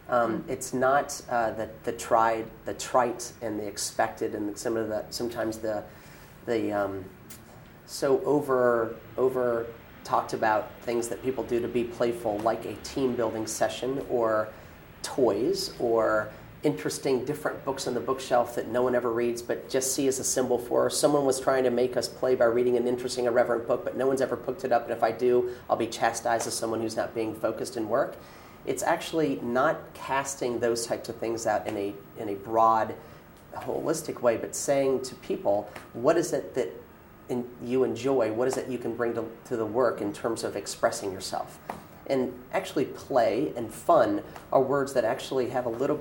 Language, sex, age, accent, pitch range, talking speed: English, male, 40-59, American, 110-130 Hz, 190 wpm